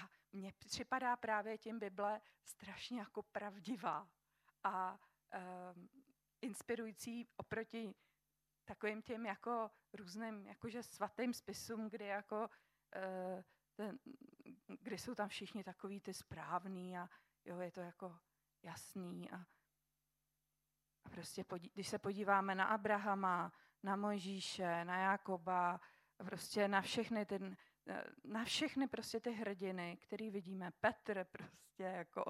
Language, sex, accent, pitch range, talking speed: Czech, female, native, 180-215 Hz, 110 wpm